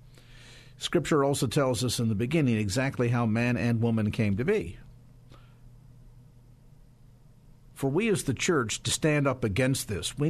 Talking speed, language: 150 wpm, English